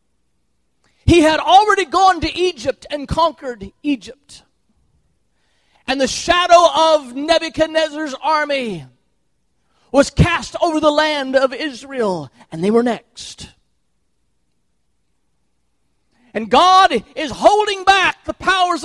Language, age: English, 40-59